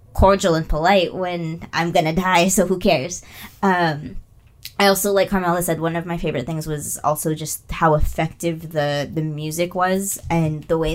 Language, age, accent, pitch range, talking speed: English, 20-39, American, 150-175 Hz, 180 wpm